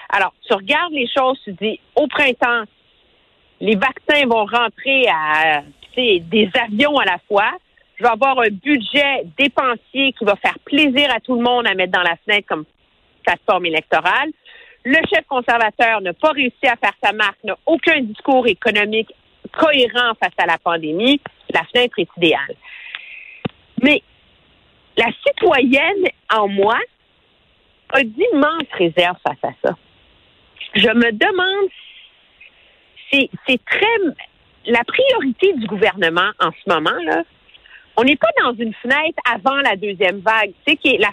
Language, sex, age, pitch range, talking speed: French, female, 50-69, 205-275 Hz, 145 wpm